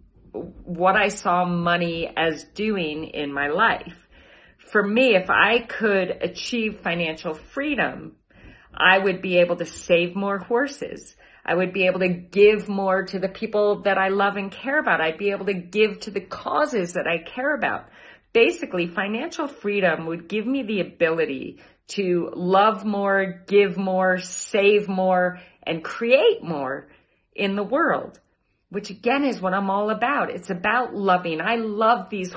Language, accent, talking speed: English, American, 160 wpm